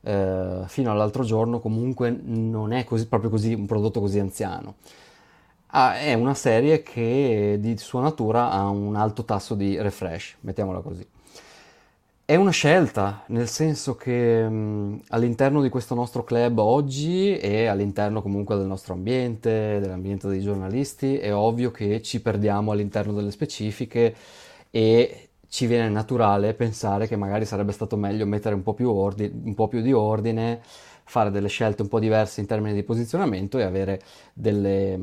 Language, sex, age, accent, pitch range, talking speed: Italian, male, 20-39, native, 100-125 Hz, 145 wpm